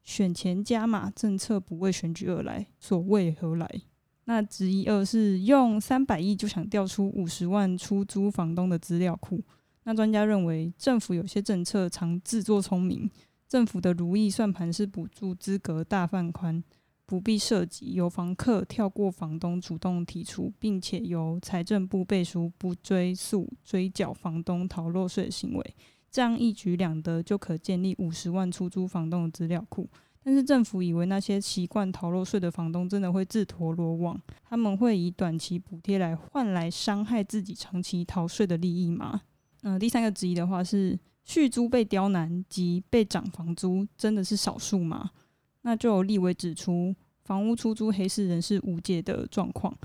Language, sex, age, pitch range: Chinese, female, 20-39, 175-210 Hz